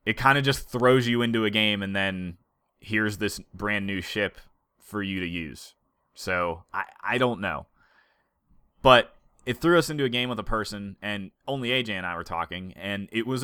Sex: male